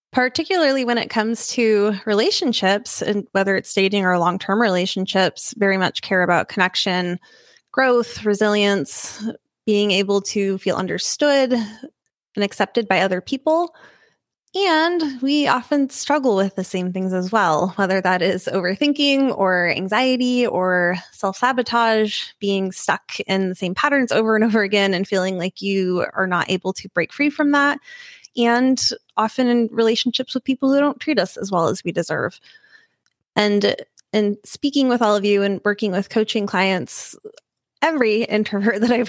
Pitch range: 195-255 Hz